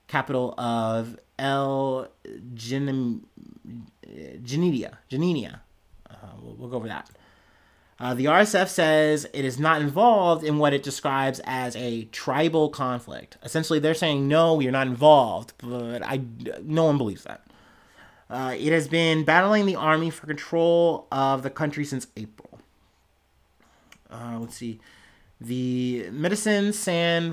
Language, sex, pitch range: English, male, 125-155 Hz